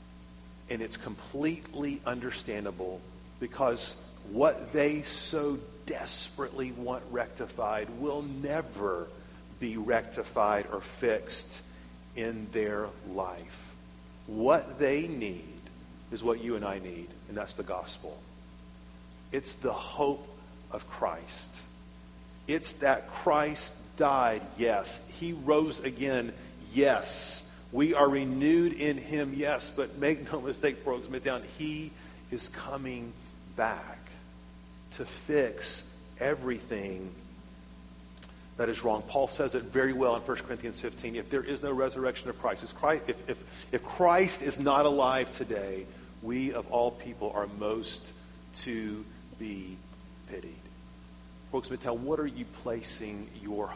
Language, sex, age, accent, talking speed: English, male, 40-59, American, 120 wpm